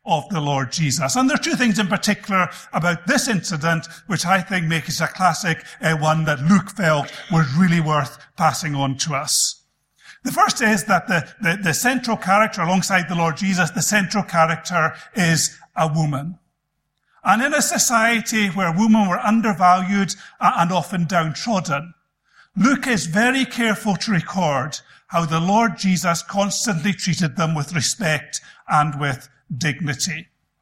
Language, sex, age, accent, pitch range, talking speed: English, male, 50-69, British, 160-215 Hz, 160 wpm